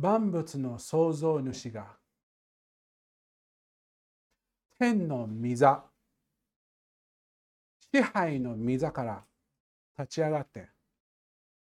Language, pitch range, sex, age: Japanese, 120-175 Hz, male, 50-69